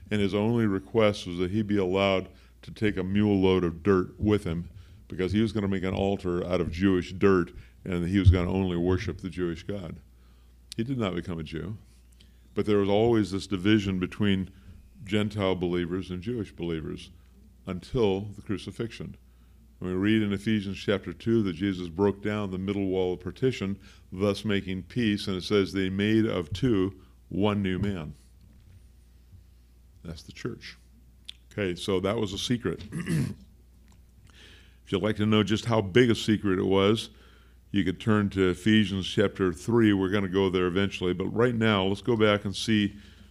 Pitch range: 90-105 Hz